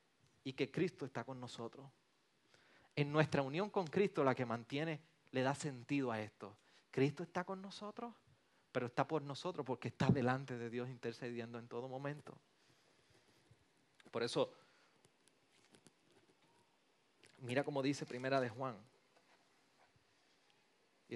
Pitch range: 130-180 Hz